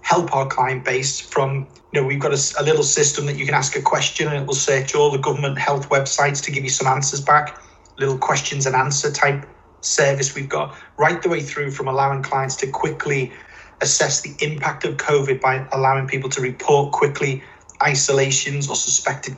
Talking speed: 200 wpm